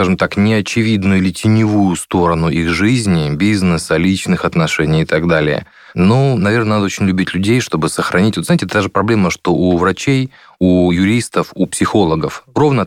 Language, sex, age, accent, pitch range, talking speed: Russian, male, 30-49, native, 85-105 Hz, 170 wpm